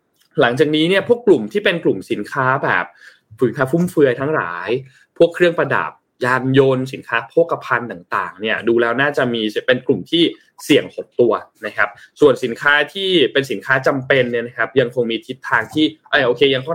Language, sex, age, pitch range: Thai, male, 20-39, 120-170 Hz